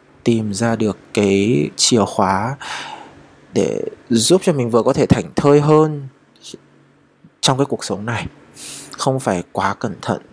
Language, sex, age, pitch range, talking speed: Vietnamese, male, 20-39, 100-130 Hz, 150 wpm